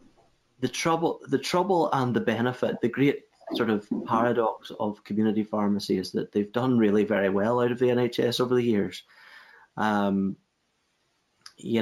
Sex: male